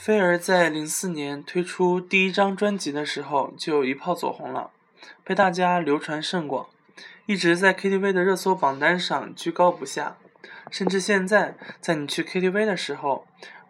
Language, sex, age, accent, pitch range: Chinese, male, 20-39, native, 150-195 Hz